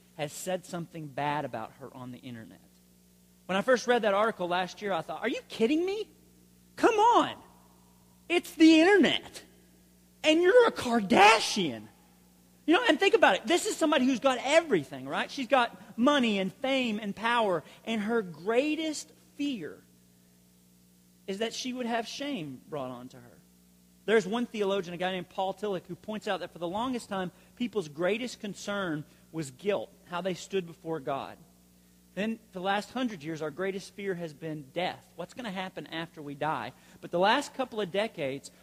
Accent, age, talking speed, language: American, 40-59, 180 wpm, English